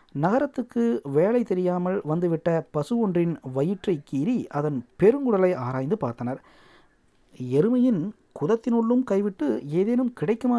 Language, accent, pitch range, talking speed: Tamil, native, 160-230 Hz, 95 wpm